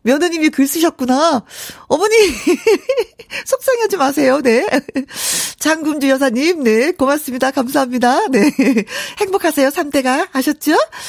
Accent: native